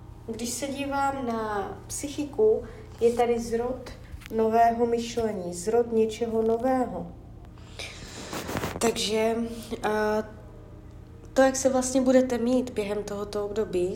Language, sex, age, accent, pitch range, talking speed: Czech, female, 20-39, native, 200-255 Hz, 100 wpm